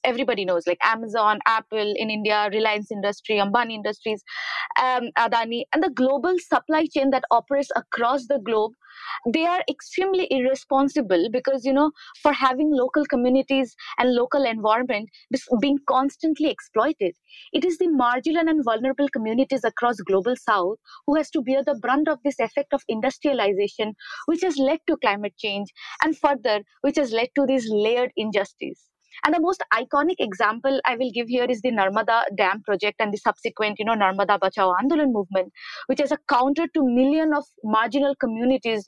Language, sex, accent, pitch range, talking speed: English, female, Indian, 215-280 Hz, 165 wpm